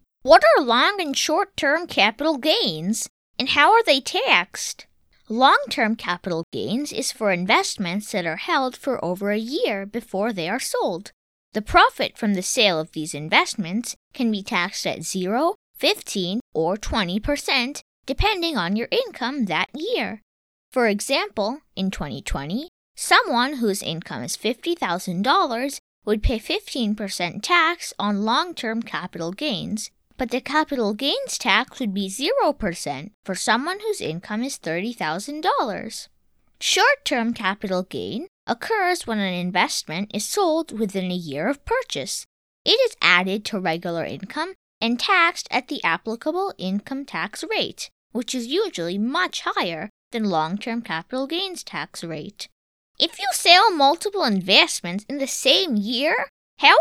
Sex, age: female, 20-39